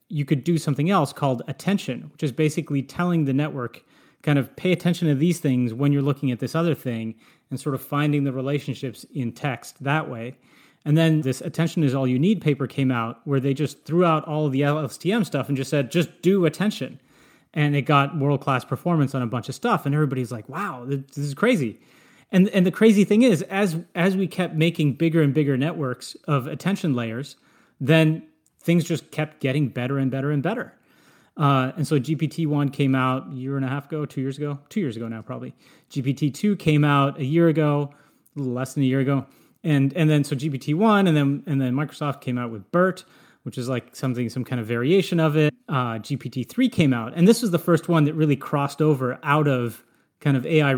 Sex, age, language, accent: male, 30-49, English, American